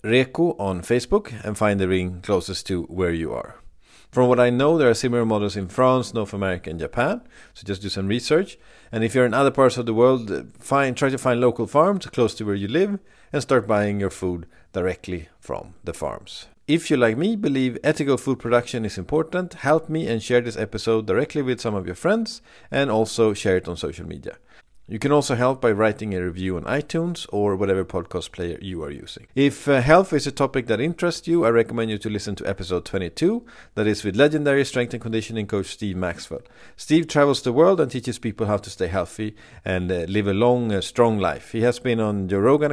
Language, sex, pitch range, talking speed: English, male, 100-140 Hz, 220 wpm